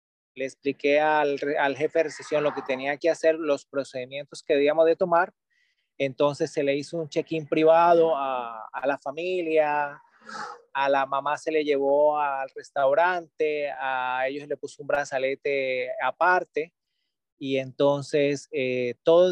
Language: Spanish